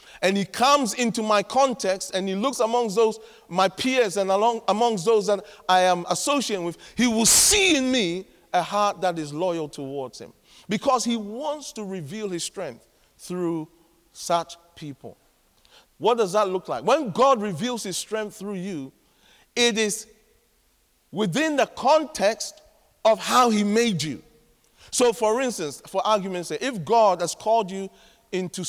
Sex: male